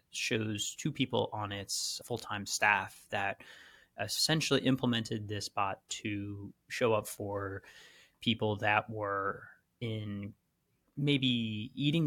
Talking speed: 110 wpm